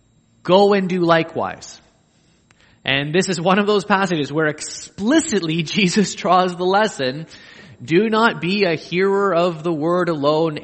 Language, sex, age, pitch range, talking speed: English, male, 20-39, 125-165 Hz, 145 wpm